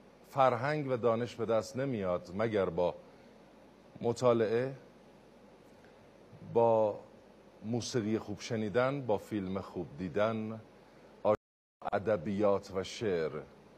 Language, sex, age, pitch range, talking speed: Persian, male, 50-69, 110-165 Hz, 85 wpm